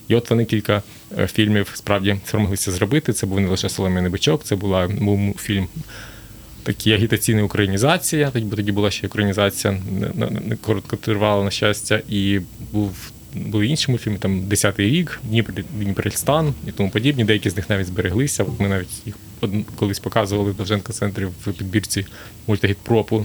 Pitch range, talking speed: 100-110 Hz, 140 wpm